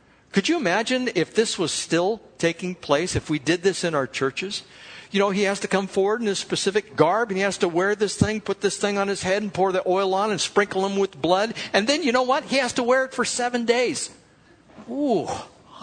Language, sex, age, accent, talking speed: English, male, 60-79, American, 245 wpm